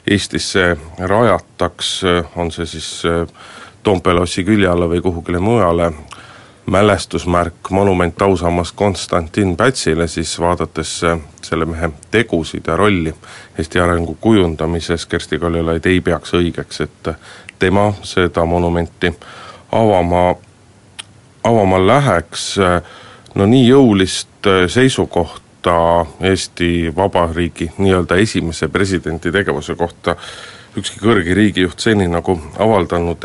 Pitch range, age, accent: 85-100 Hz, 30-49, native